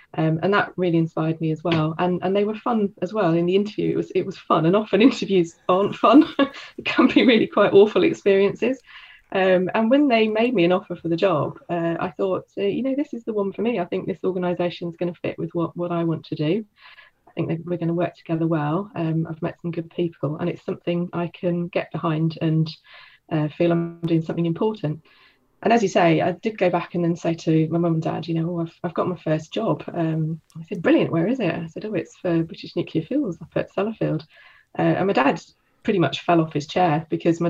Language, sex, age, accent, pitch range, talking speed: English, female, 20-39, British, 160-195 Hz, 250 wpm